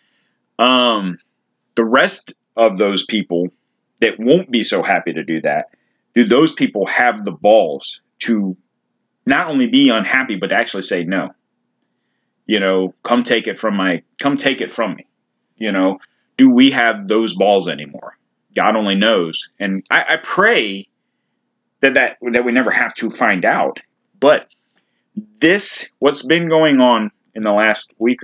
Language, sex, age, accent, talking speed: English, male, 30-49, American, 160 wpm